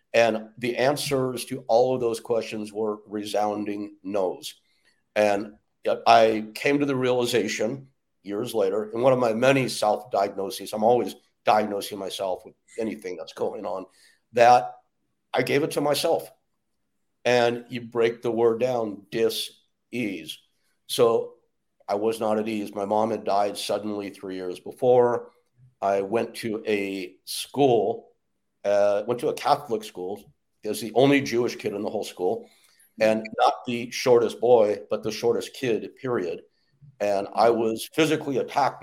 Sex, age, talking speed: male, 50-69, 150 wpm